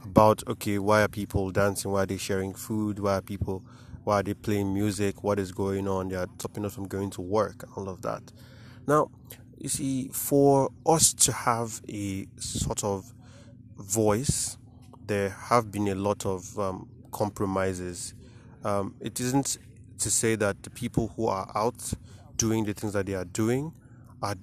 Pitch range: 100-120 Hz